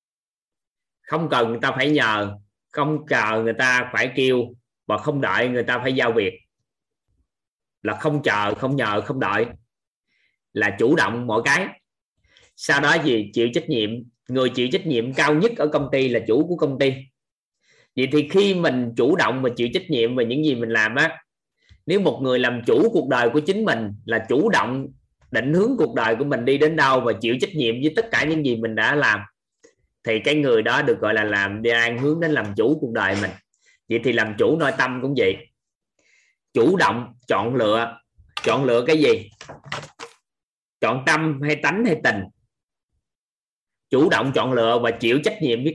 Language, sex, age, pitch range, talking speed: Vietnamese, male, 20-39, 115-150 Hz, 195 wpm